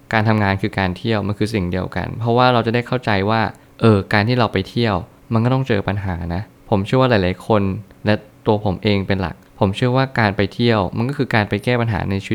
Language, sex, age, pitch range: Thai, male, 20-39, 100-120 Hz